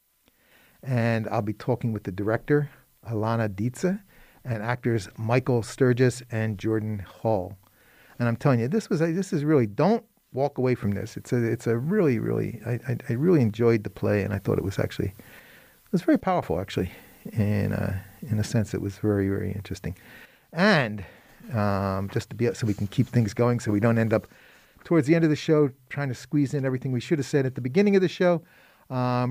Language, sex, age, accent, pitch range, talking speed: English, male, 40-59, American, 110-150 Hz, 210 wpm